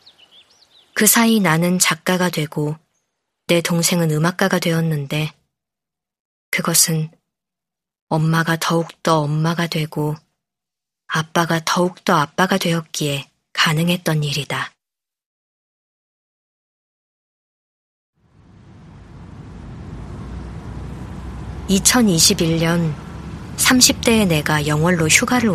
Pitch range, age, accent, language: 155-195 Hz, 20-39, native, Korean